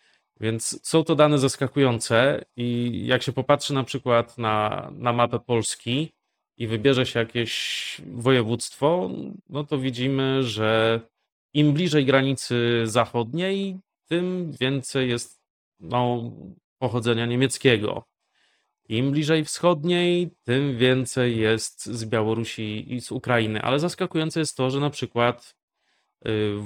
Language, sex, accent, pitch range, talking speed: Polish, male, native, 115-140 Hz, 115 wpm